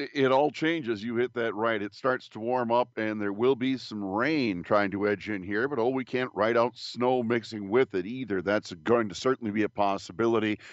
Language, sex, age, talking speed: English, male, 50-69, 230 wpm